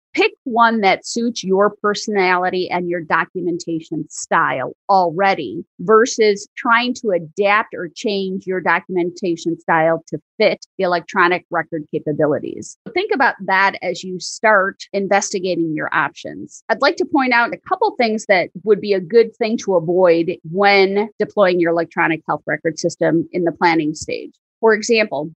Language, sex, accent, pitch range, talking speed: English, female, American, 175-215 Hz, 150 wpm